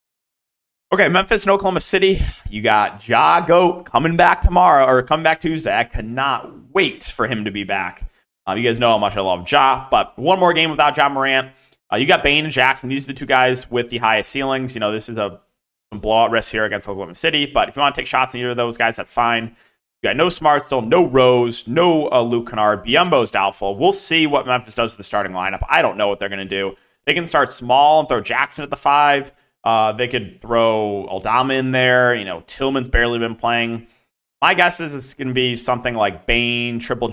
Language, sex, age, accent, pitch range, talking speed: English, male, 30-49, American, 105-140 Hz, 235 wpm